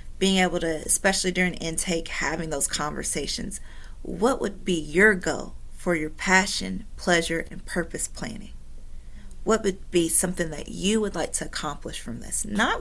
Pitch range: 145-180 Hz